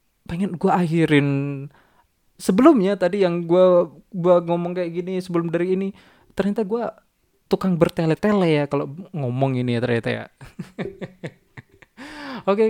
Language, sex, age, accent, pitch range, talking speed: Indonesian, male, 20-39, native, 130-190 Hz, 130 wpm